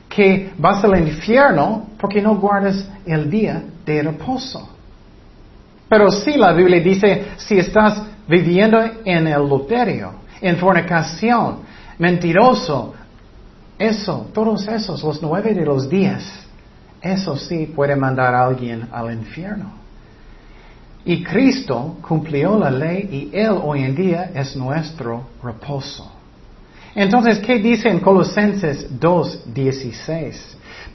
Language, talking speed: Spanish, 115 wpm